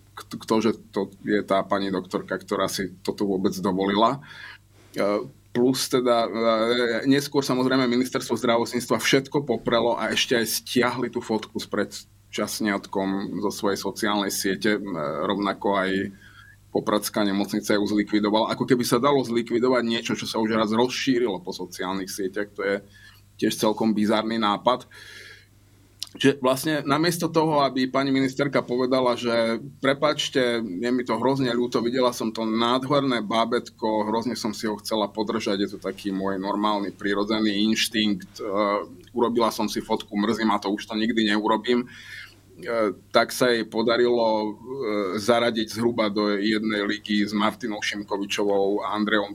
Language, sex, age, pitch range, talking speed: Slovak, male, 20-39, 100-120 Hz, 140 wpm